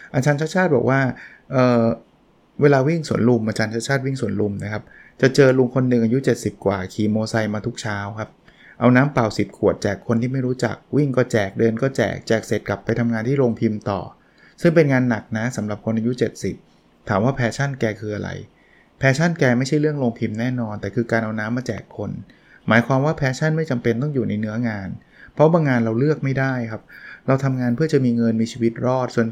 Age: 20-39